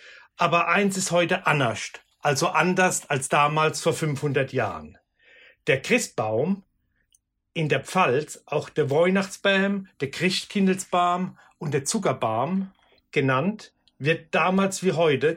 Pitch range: 150-190 Hz